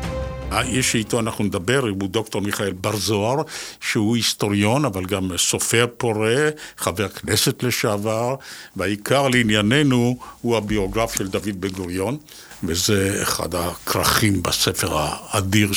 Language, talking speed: Hebrew, 120 wpm